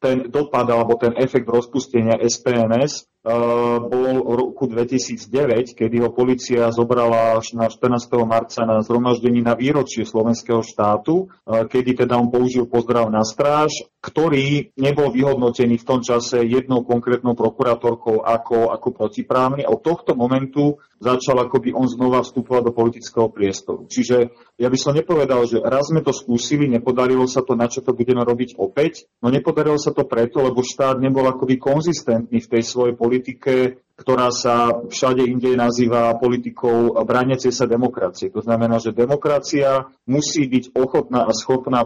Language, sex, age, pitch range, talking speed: Slovak, male, 40-59, 120-130 Hz, 155 wpm